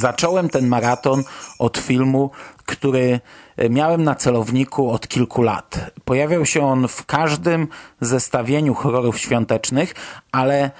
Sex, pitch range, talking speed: male, 120-145 Hz, 115 wpm